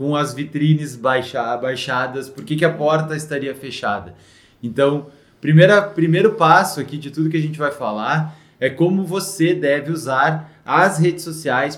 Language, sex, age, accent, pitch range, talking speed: Portuguese, male, 20-39, Brazilian, 135-165 Hz, 160 wpm